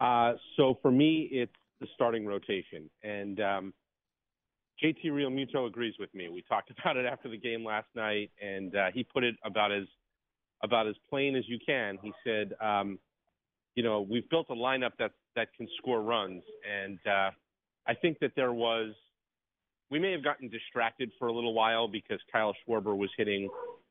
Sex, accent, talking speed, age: male, American, 180 wpm, 40-59